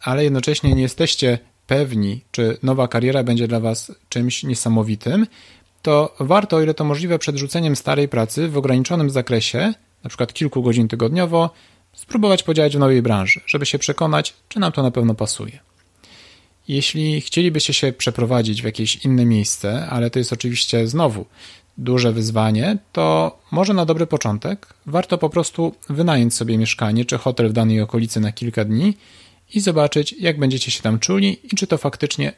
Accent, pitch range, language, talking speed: native, 115-155 Hz, Polish, 165 wpm